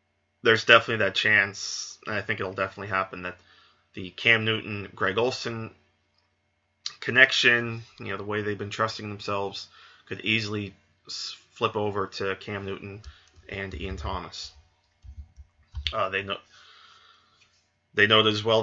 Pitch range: 95-110 Hz